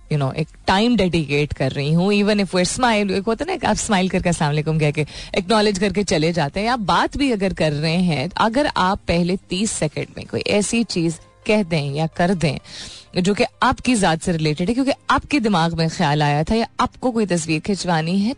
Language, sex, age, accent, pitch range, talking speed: Hindi, female, 30-49, native, 160-220 Hz, 225 wpm